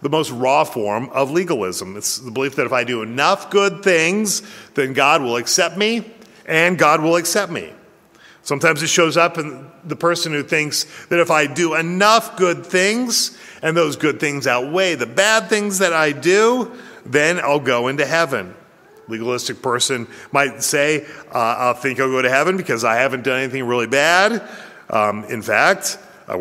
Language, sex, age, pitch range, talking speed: English, male, 40-59, 125-170 Hz, 180 wpm